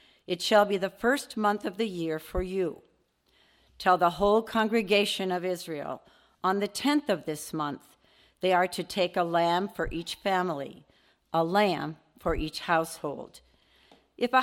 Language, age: English, 50-69